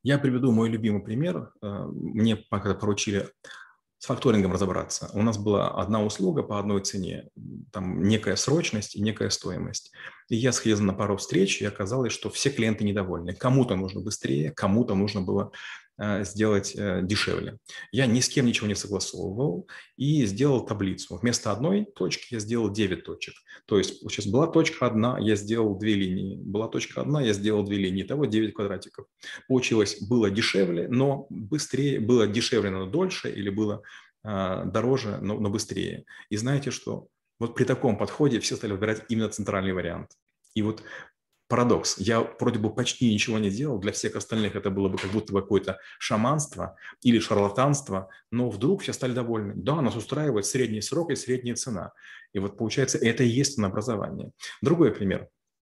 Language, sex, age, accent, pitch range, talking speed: Russian, male, 30-49, native, 100-125 Hz, 165 wpm